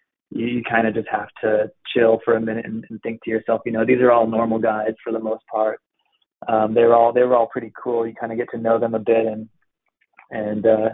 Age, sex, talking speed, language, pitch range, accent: 20-39, male, 250 wpm, English, 105-115 Hz, American